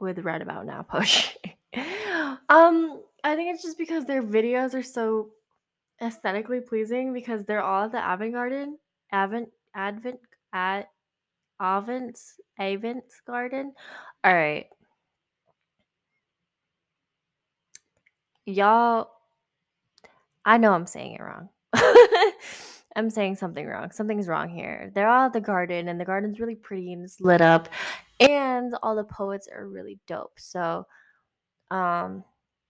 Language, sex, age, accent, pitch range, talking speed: English, female, 20-39, American, 175-235 Hz, 125 wpm